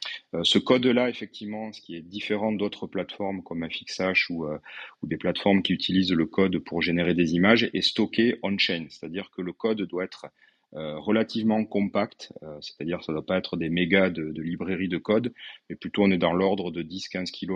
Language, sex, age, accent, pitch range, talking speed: French, male, 30-49, French, 85-105 Hz, 200 wpm